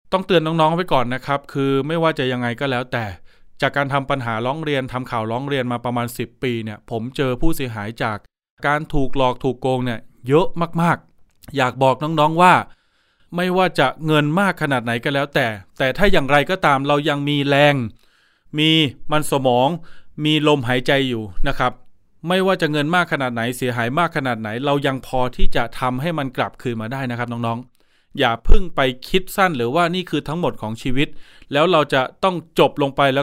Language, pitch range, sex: Thai, 120-150 Hz, male